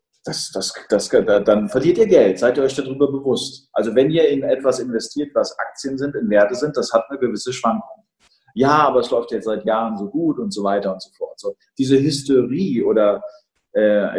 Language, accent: German, German